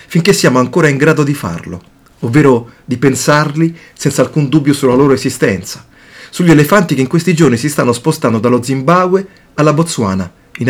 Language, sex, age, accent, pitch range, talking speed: Italian, male, 40-59, native, 120-155 Hz, 170 wpm